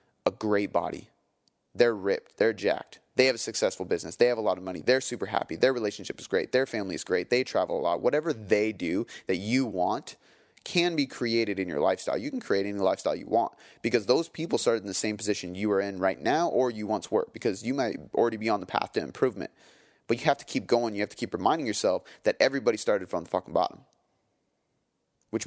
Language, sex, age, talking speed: English, male, 30-49, 235 wpm